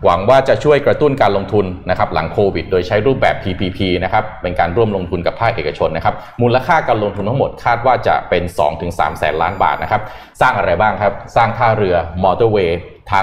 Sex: male